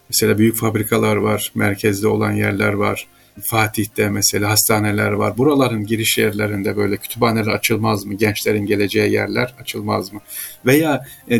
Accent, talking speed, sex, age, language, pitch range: native, 135 wpm, male, 50-69, Turkish, 105-120 Hz